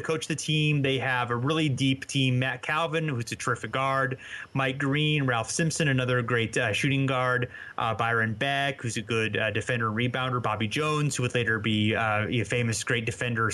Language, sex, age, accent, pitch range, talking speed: English, male, 30-49, American, 120-145 Hz, 195 wpm